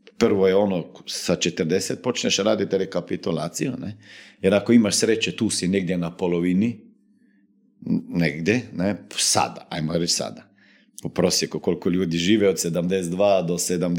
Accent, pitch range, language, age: native, 85-110 Hz, Croatian, 40-59